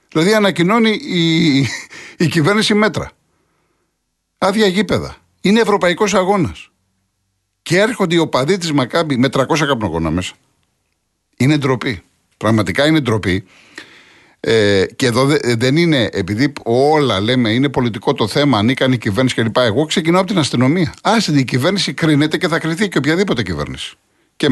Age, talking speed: 50-69, 140 wpm